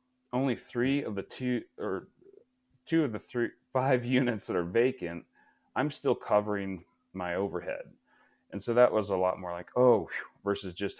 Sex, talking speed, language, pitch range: male, 170 wpm, English, 90-130 Hz